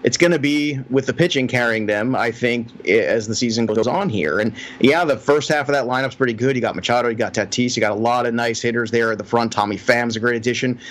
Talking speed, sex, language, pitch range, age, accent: 270 wpm, male, English, 125-170 Hz, 30-49, American